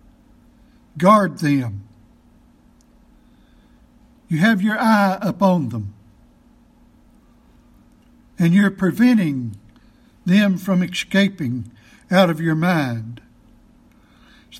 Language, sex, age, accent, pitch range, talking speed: English, male, 60-79, American, 170-220 Hz, 80 wpm